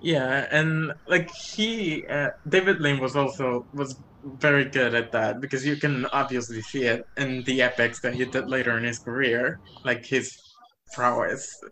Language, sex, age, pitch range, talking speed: English, male, 20-39, 125-145 Hz, 170 wpm